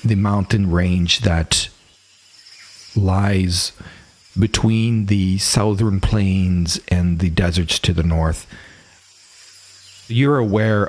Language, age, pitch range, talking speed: English, 40-59, 85-105 Hz, 95 wpm